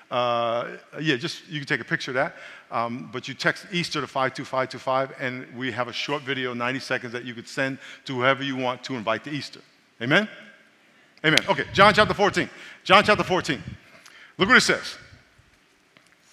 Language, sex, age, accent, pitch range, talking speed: English, male, 50-69, American, 145-200 Hz, 200 wpm